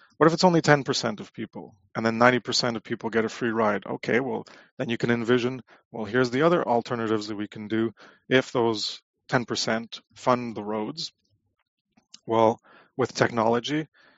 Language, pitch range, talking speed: English, 105-125 Hz, 170 wpm